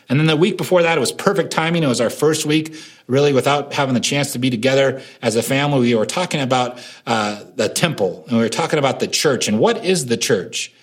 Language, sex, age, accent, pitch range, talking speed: English, male, 40-59, American, 120-155 Hz, 250 wpm